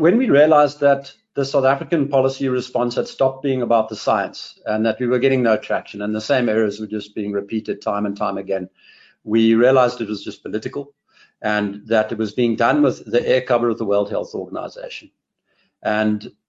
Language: English